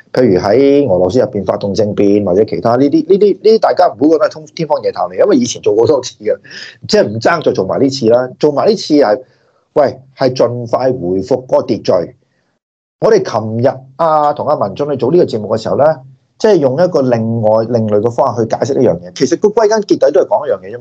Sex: male